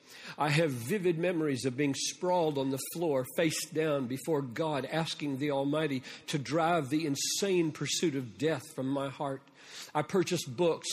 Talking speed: 165 wpm